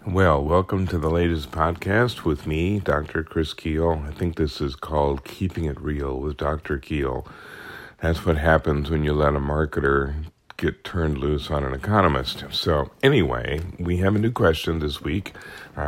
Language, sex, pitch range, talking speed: English, male, 70-85 Hz, 175 wpm